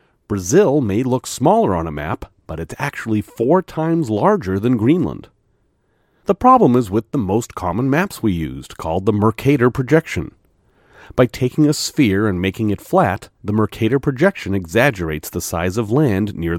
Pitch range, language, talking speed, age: 95-135 Hz, English, 165 wpm, 40-59